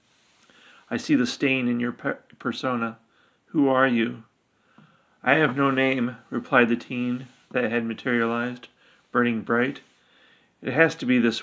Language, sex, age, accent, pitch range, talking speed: English, male, 40-59, American, 115-135 Hz, 140 wpm